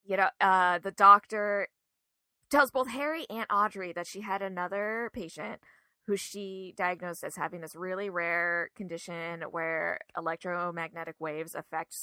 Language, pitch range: English, 170-215 Hz